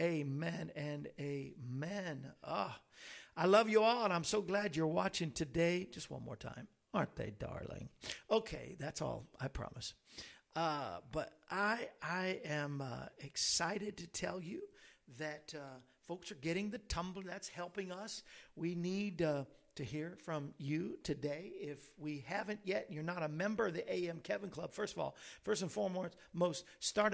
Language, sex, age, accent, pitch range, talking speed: English, male, 50-69, American, 160-195 Hz, 170 wpm